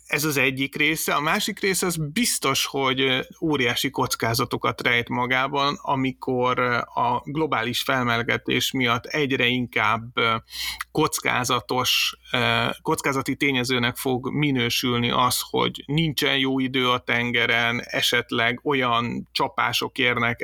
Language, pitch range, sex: Hungarian, 120-140 Hz, male